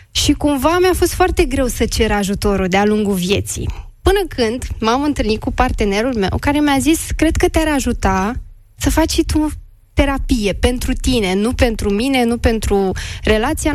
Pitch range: 220-305 Hz